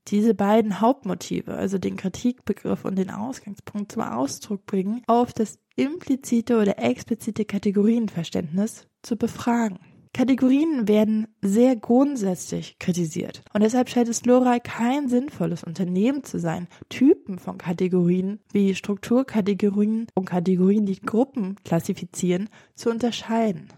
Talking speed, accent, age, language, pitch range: 120 wpm, German, 20-39, German, 190-240 Hz